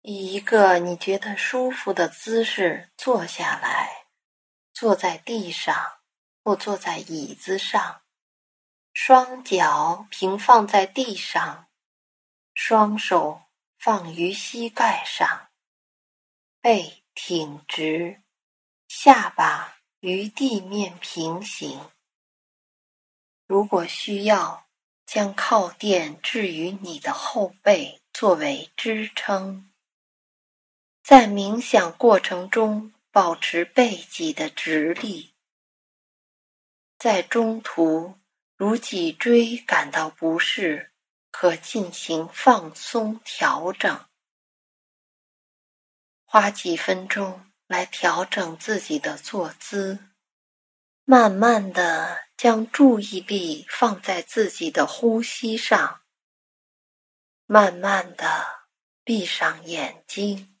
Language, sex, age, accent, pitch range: English, female, 20-39, Chinese, 180-230 Hz